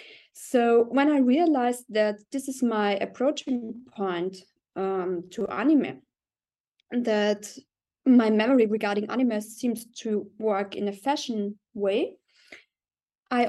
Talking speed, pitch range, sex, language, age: 115 wpm, 205-245 Hz, female, English, 20-39